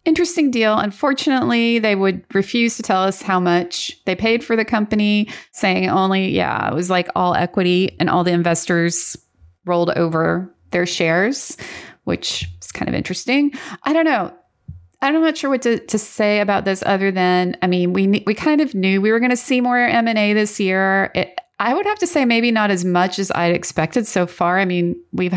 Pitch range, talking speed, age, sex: 175-235 Hz, 200 wpm, 30-49, female